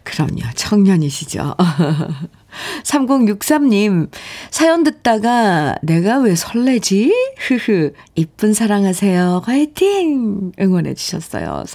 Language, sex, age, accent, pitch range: Korean, female, 40-59, native, 175-260 Hz